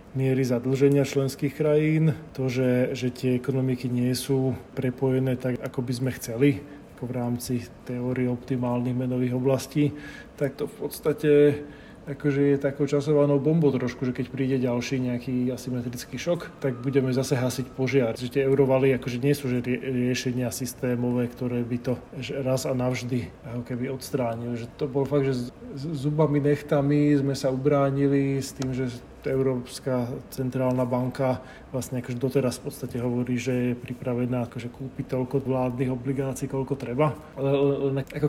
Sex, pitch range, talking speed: male, 125-145 Hz, 160 wpm